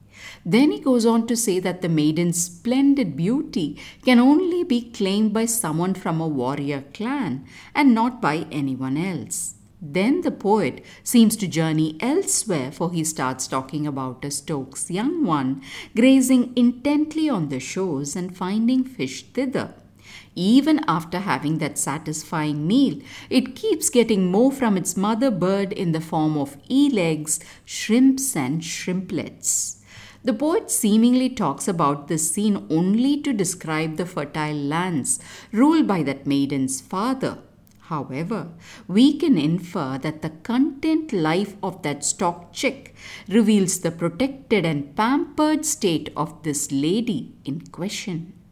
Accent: Indian